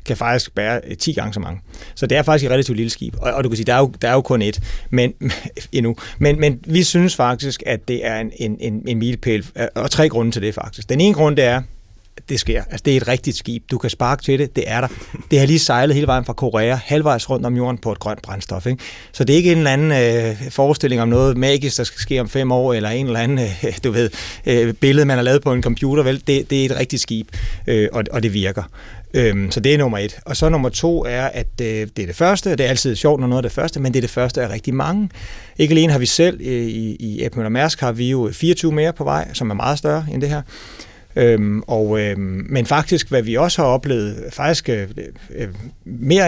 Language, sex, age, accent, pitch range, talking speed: Danish, male, 30-49, native, 115-140 Hz, 255 wpm